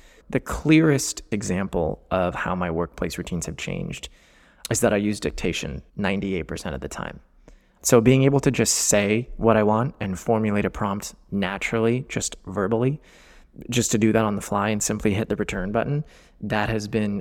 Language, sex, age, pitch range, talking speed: English, male, 20-39, 105-130 Hz, 180 wpm